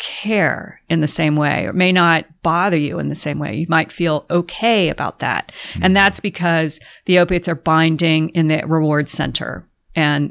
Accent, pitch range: American, 160-190 Hz